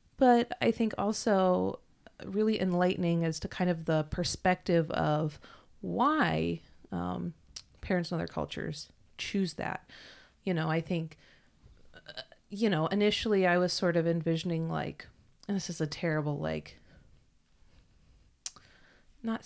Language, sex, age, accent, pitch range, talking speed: English, female, 30-49, American, 155-190 Hz, 125 wpm